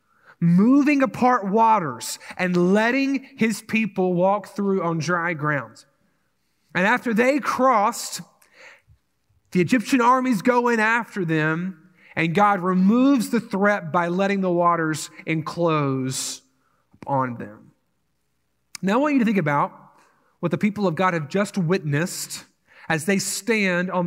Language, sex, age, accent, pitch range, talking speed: English, male, 30-49, American, 175-245 Hz, 135 wpm